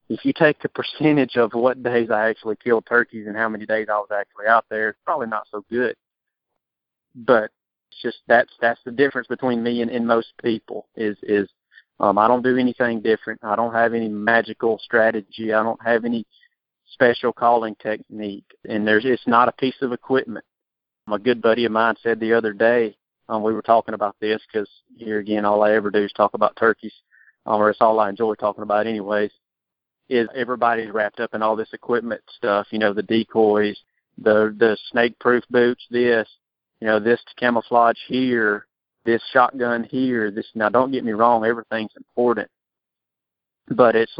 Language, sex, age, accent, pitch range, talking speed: English, male, 30-49, American, 110-120 Hz, 190 wpm